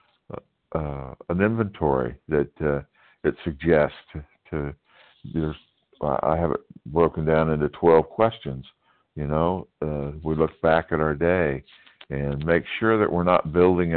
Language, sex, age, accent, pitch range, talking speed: English, male, 60-79, American, 70-85 Hz, 140 wpm